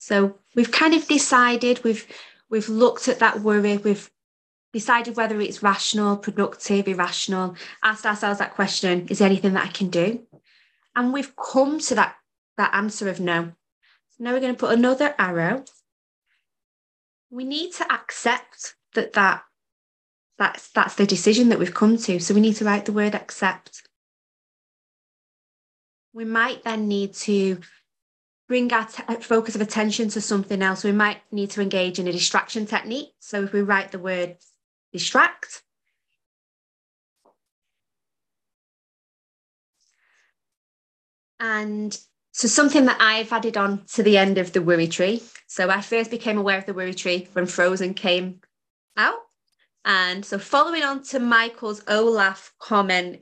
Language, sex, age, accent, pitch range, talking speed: English, female, 20-39, British, 190-230 Hz, 150 wpm